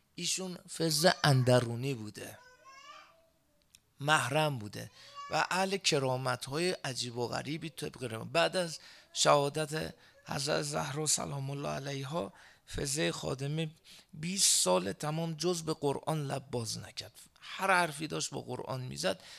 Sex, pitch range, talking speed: male, 130-160 Hz, 115 wpm